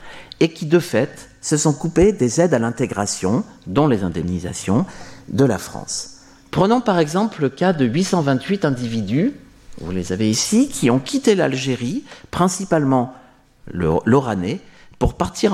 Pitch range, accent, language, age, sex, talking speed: 105-160 Hz, French, French, 50-69, male, 145 wpm